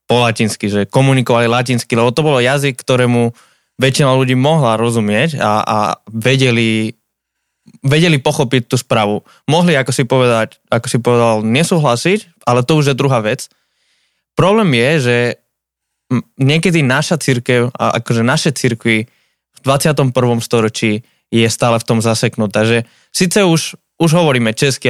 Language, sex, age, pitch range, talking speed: Slovak, male, 20-39, 115-135 Hz, 140 wpm